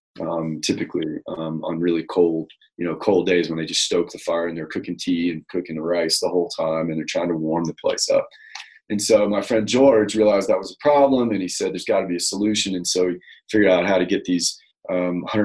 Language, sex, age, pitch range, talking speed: English, male, 30-49, 85-100 Hz, 250 wpm